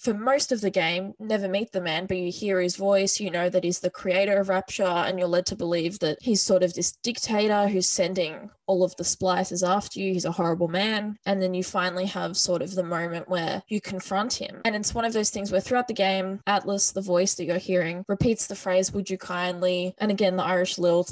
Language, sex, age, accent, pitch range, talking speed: English, female, 10-29, Australian, 180-200 Hz, 240 wpm